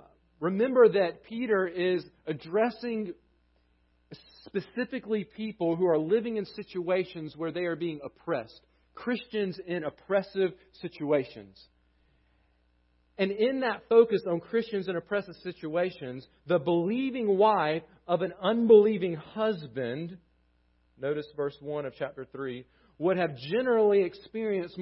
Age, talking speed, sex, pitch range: 40-59, 115 wpm, male, 155-200 Hz